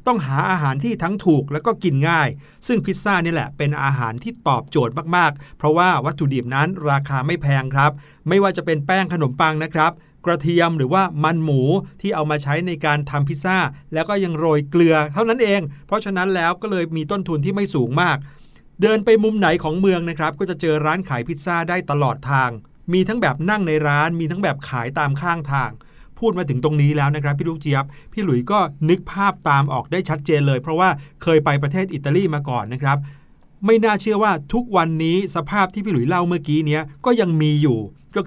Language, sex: Thai, male